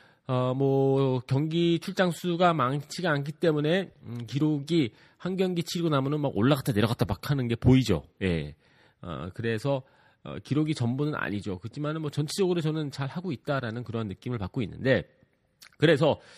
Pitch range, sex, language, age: 110-165 Hz, male, Korean, 40-59